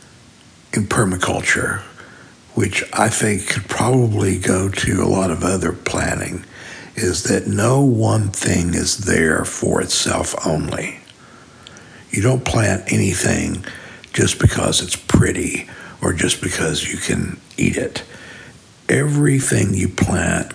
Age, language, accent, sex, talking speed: 60-79, English, American, male, 125 wpm